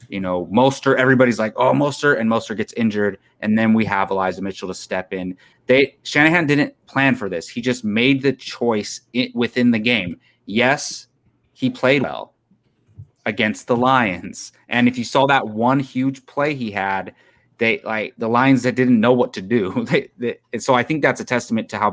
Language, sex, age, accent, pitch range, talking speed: English, male, 30-49, American, 105-135 Hz, 195 wpm